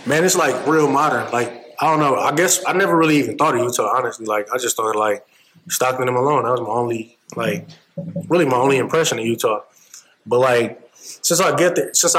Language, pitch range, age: English, 125-155 Hz, 20-39